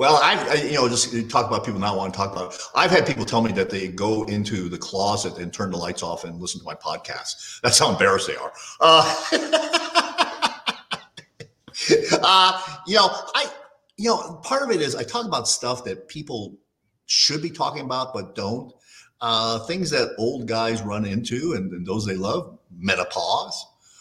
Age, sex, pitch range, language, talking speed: 50-69, male, 105-155 Hz, English, 190 wpm